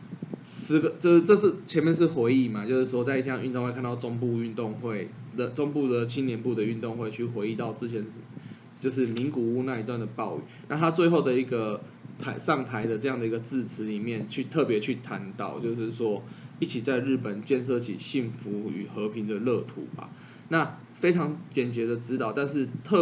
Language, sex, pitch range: Chinese, male, 115-150 Hz